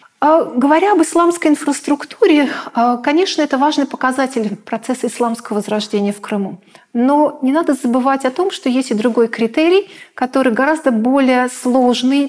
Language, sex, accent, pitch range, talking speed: Russian, female, native, 235-290 Hz, 135 wpm